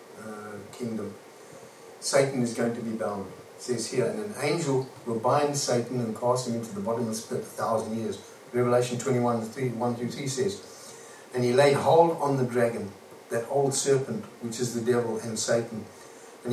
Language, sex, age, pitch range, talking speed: English, male, 50-69, 110-135 Hz, 175 wpm